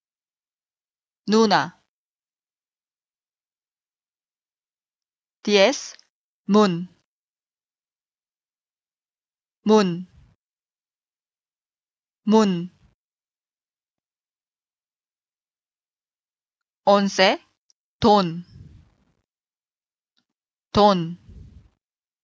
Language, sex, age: Korean, female, 30-49